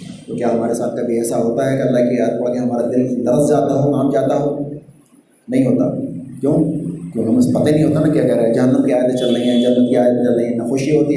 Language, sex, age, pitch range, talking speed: Urdu, male, 30-49, 120-140 Hz, 270 wpm